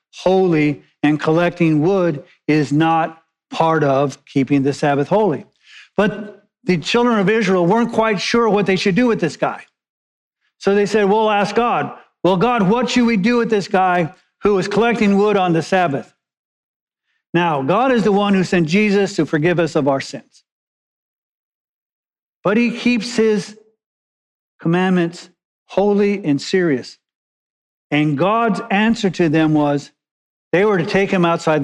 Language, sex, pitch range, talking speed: English, male, 170-220 Hz, 155 wpm